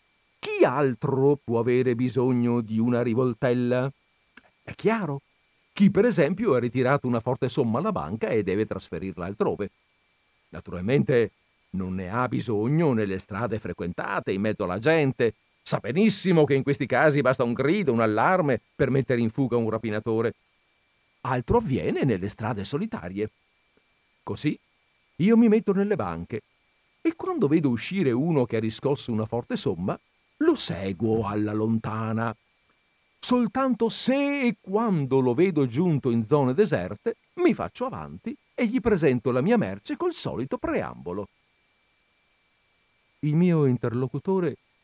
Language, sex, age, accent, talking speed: Italian, male, 50-69, native, 140 wpm